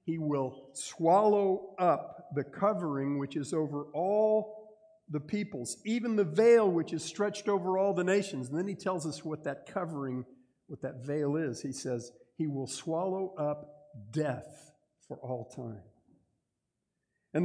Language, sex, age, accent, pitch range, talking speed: English, male, 50-69, American, 145-200 Hz, 155 wpm